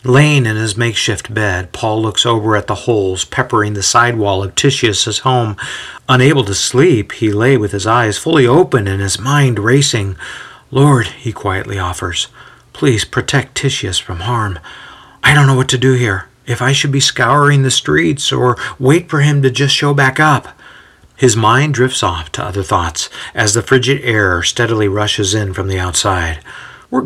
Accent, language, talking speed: American, English, 180 wpm